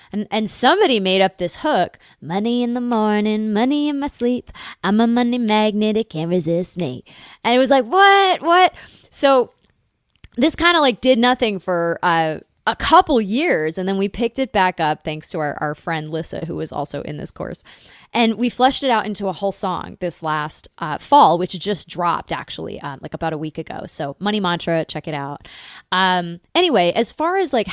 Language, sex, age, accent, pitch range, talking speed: English, female, 20-39, American, 170-230 Hz, 205 wpm